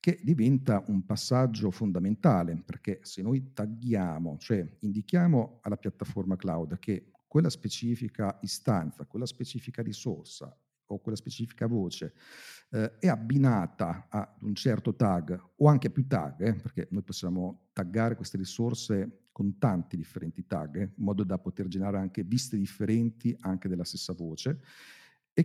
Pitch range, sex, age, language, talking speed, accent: 95-120 Hz, male, 50-69, Italian, 145 wpm, native